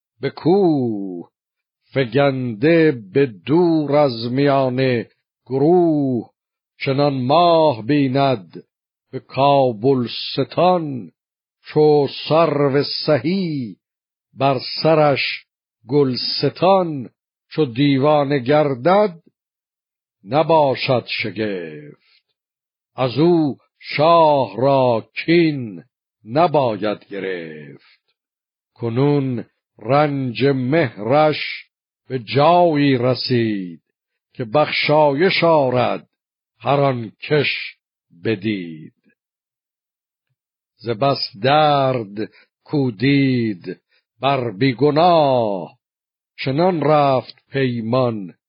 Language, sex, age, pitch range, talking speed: Persian, male, 60-79, 120-150 Hz, 65 wpm